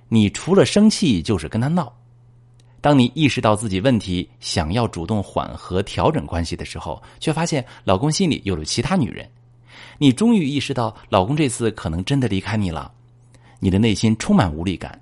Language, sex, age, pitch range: Chinese, male, 30-49, 100-125 Hz